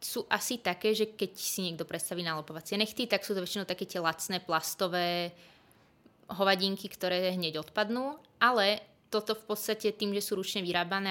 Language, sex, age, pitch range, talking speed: Czech, female, 20-39, 175-210 Hz, 165 wpm